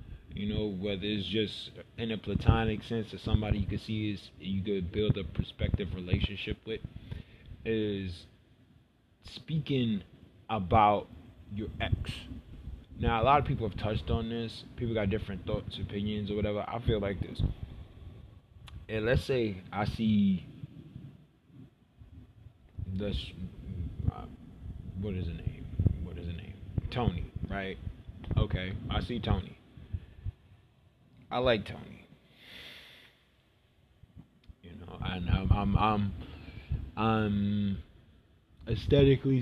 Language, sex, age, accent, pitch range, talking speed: English, male, 20-39, American, 95-110 Hz, 120 wpm